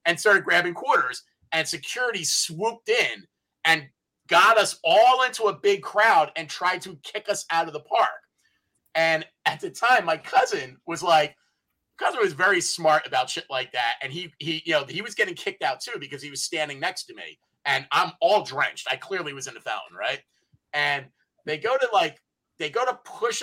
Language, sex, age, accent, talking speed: English, male, 30-49, American, 205 wpm